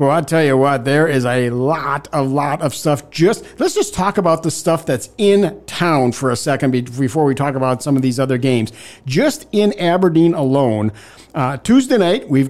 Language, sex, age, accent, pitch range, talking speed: English, male, 50-69, American, 135-165 Hz, 205 wpm